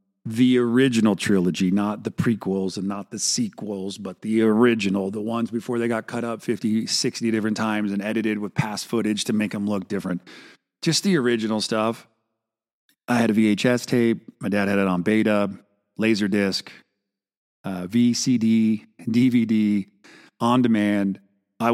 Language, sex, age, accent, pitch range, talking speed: English, male, 40-59, American, 100-125 Hz, 155 wpm